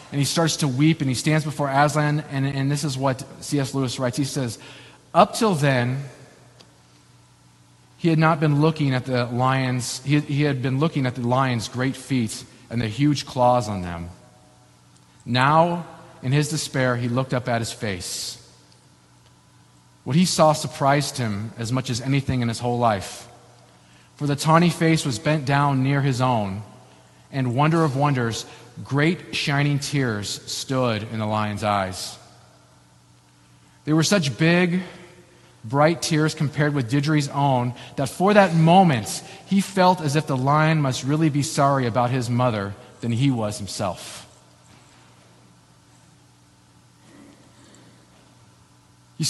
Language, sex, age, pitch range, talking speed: English, male, 40-59, 110-150 Hz, 150 wpm